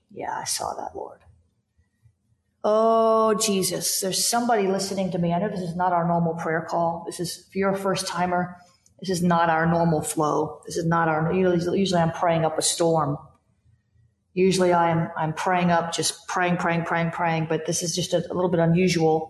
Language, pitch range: English, 165-190 Hz